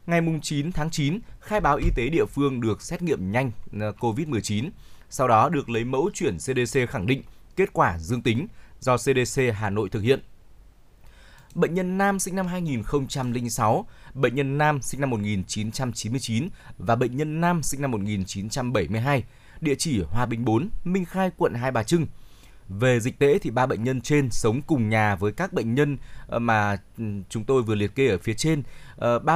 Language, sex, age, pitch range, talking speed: Vietnamese, male, 20-39, 115-150 Hz, 180 wpm